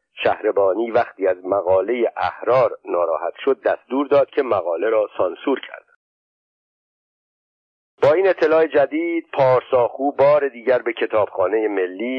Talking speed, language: 120 wpm, Persian